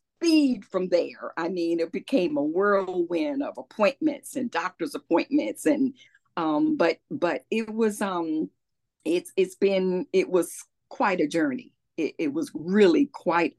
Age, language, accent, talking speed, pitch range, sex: 40-59, English, American, 150 wpm, 170-280 Hz, female